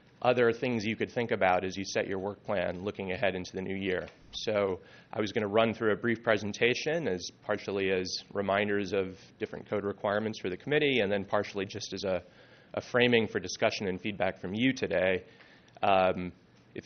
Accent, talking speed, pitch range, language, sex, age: American, 200 wpm, 95-110 Hz, English, male, 30-49